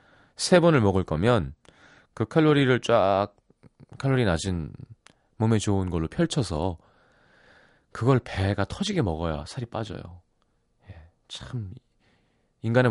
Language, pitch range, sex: Korean, 95-135 Hz, male